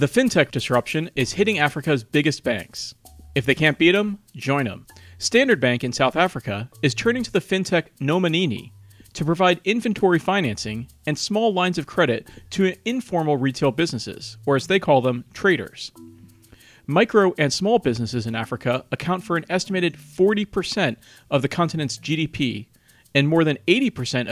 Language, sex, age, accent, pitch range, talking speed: English, male, 40-59, American, 125-180 Hz, 160 wpm